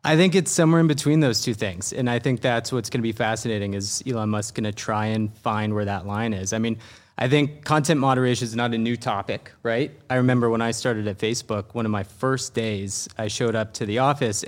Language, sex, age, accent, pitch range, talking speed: English, male, 30-49, American, 110-130 Hz, 250 wpm